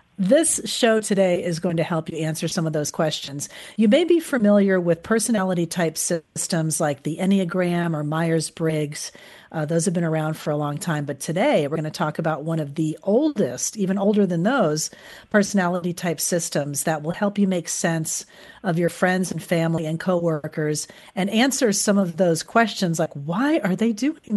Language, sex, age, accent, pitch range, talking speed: English, female, 40-59, American, 160-210 Hz, 190 wpm